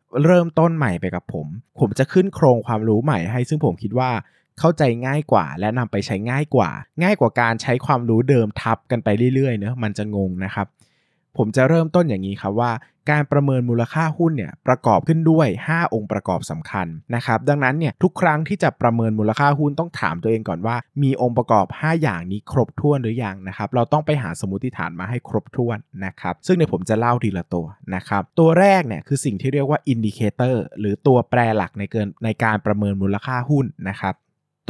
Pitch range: 110-150 Hz